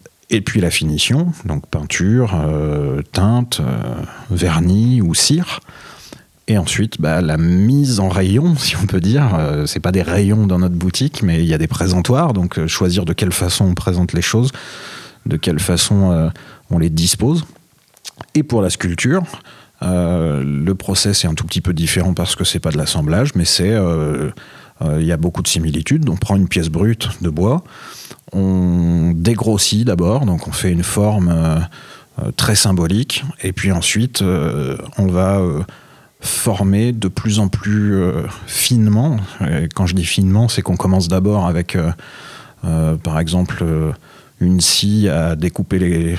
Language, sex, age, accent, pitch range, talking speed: French, male, 40-59, French, 85-105 Hz, 170 wpm